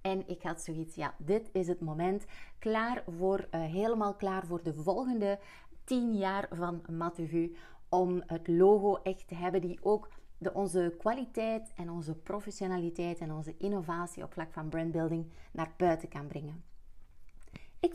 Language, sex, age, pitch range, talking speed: Dutch, female, 30-49, 165-205 Hz, 155 wpm